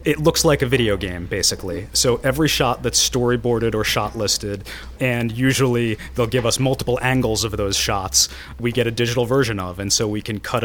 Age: 30-49